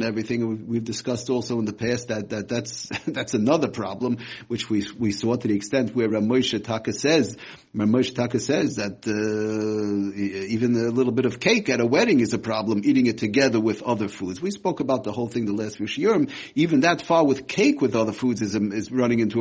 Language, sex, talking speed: English, male, 210 wpm